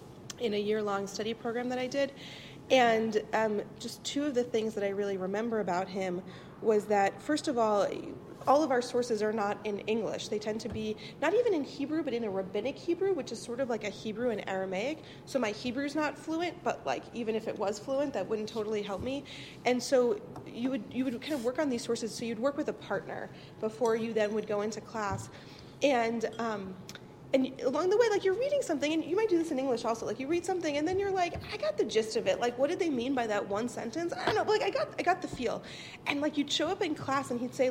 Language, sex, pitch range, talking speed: English, female, 215-290 Hz, 255 wpm